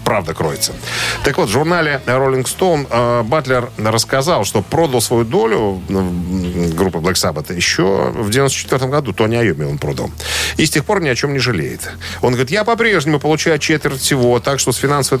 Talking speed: 180 wpm